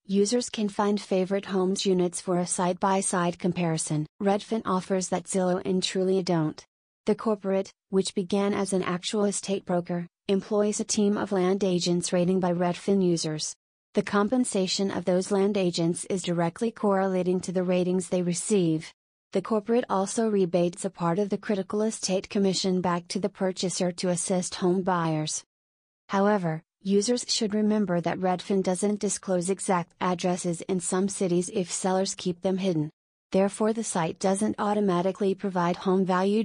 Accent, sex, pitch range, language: American, female, 180-200 Hz, English